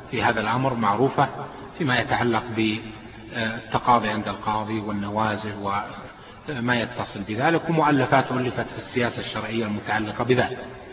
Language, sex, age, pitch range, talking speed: Arabic, male, 30-49, 115-145 Hz, 110 wpm